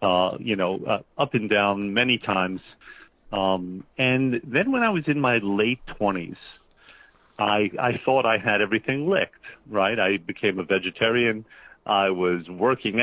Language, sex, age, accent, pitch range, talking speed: English, male, 50-69, American, 100-135 Hz, 155 wpm